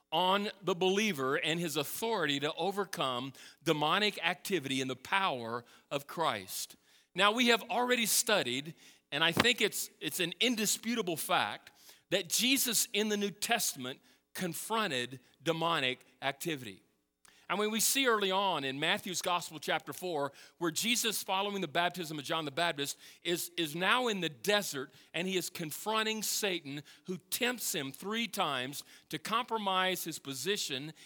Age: 40-59